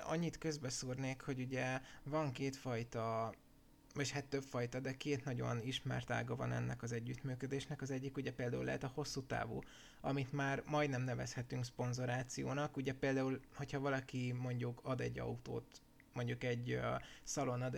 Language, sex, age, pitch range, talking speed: Hungarian, male, 20-39, 120-140 Hz, 150 wpm